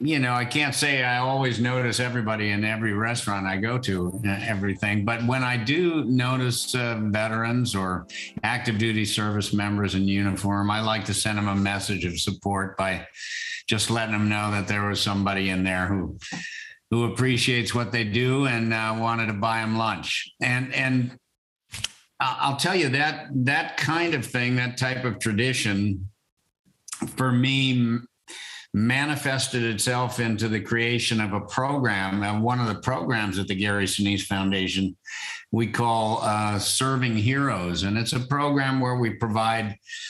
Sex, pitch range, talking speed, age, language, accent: male, 100-125 Hz, 165 wpm, 50-69, English, American